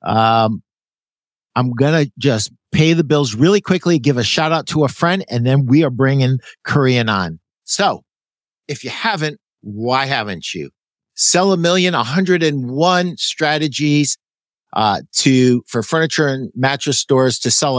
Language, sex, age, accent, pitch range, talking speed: English, male, 50-69, American, 125-160 Hz, 150 wpm